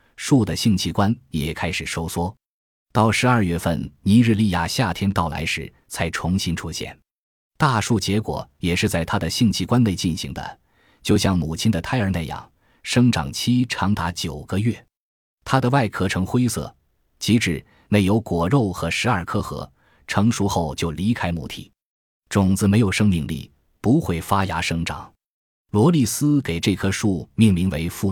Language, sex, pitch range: Chinese, male, 85-115 Hz